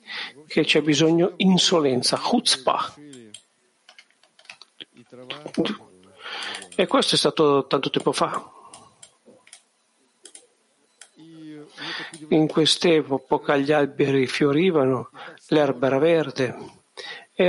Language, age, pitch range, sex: Italian, 50-69, 145-175 Hz, male